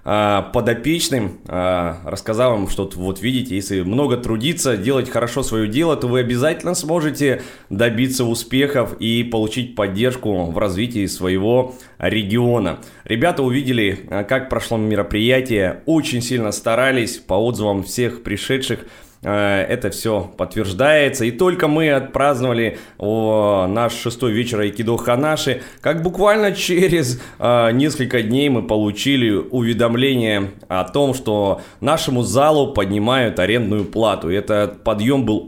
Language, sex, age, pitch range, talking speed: Russian, male, 20-39, 105-130 Hz, 120 wpm